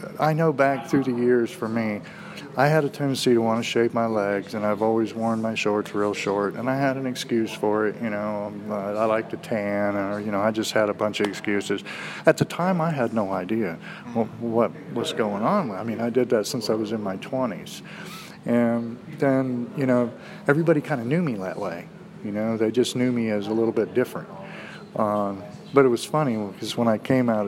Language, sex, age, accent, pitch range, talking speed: English, male, 40-59, American, 105-130 Hz, 225 wpm